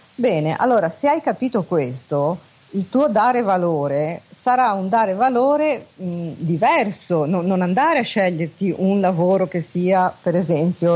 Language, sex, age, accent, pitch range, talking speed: Italian, female, 40-59, native, 155-215 Hz, 135 wpm